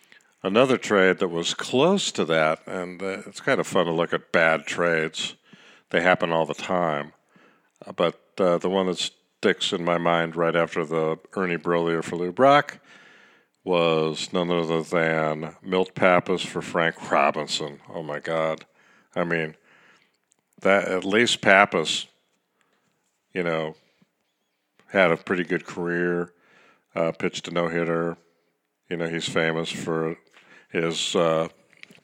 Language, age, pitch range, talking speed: English, 50-69, 80-95 Hz, 145 wpm